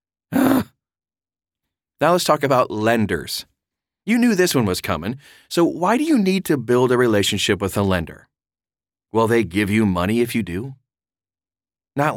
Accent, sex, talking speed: American, male, 160 wpm